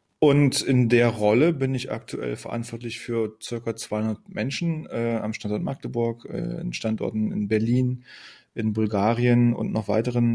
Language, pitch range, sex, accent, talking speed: German, 110-125 Hz, male, German, 150 wpm